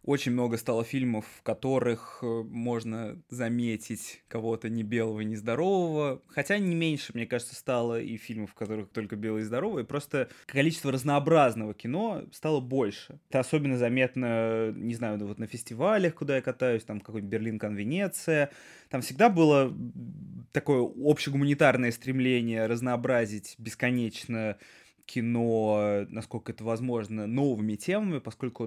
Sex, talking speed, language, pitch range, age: male, 130 wpm, Russian, 115-140 Hz, 20-39